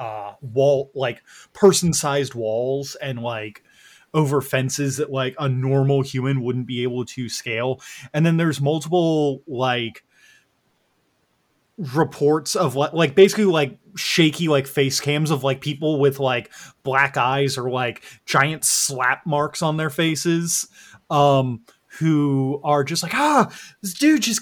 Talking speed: 140 wpm